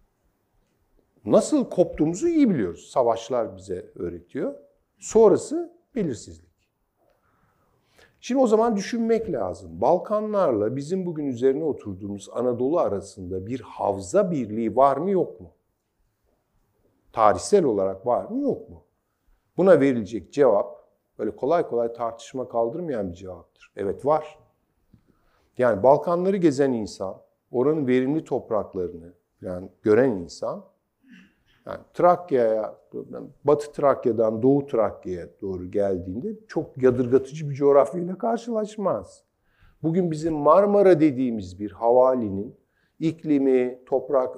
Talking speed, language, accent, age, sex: 105 wpm, Turkish, native, 50-69, male